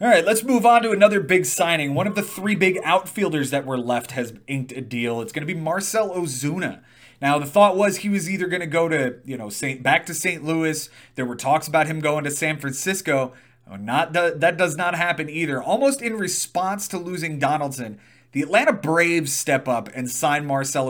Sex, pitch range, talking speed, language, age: male, 135-185 Hz, 215 wpm, English, 30-49